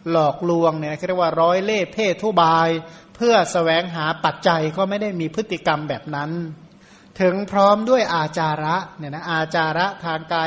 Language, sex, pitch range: Thai, male, 160-185 Hz